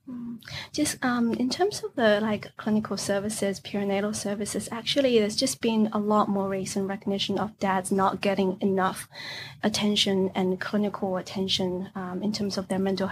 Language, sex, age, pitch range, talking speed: English, female, 20-39, 190-210 Hz, 160 wpm